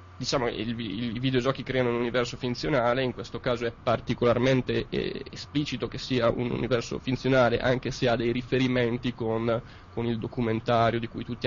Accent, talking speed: native, 160 wpm